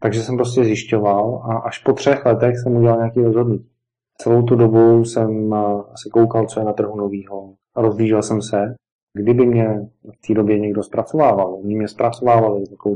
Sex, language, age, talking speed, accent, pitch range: male, Czech, 30-49, 180 wpm, native, 105-115 Hz